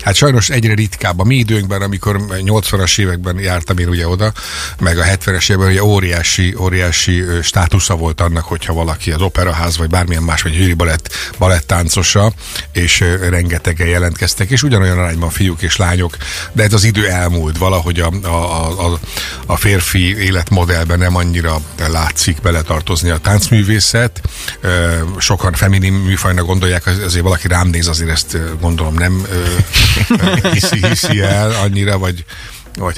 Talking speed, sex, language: 145 wpm, male, Hungarian